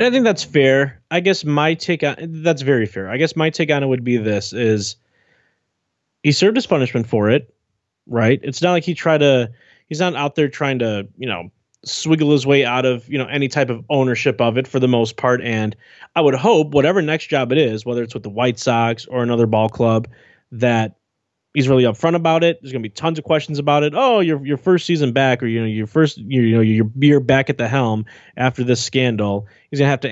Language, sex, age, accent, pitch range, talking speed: English, male, 20-39, American, 120-160 Hz, 235 wpm